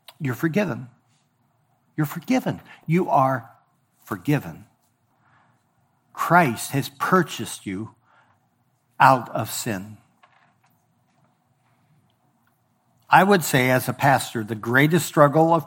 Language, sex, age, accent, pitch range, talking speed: English, male, 60-79, American, 120-155 Hz, 90 wpm